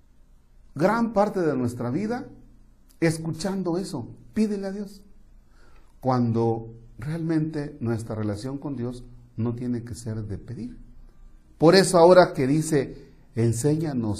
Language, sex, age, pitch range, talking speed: Spanish, male, 50-69, 100-150 Hz, 120 wpm